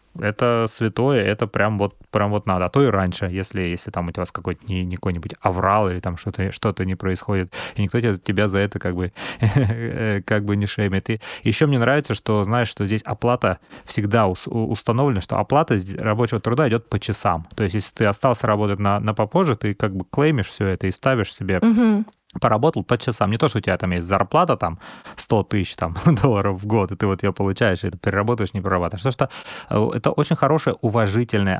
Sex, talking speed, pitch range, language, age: male, 200 wpm, 95-115 Hz, Russian, 30-49